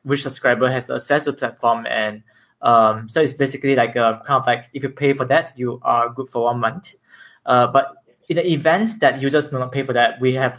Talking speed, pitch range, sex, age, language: 240 wpm, 125-140 Hz, male, 20-39, English